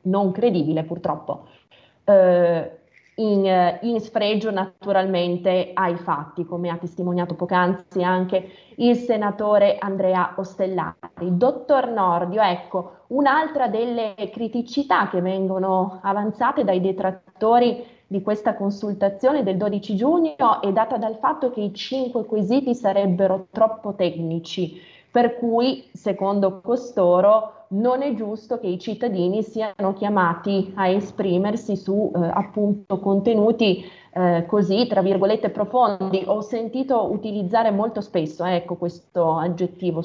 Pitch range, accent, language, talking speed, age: 185-225 Hz, native, Italian, 115 wpm, 20-39